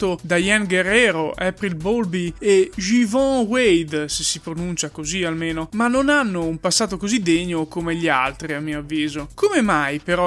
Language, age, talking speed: Italian, 20-39, 165 wpm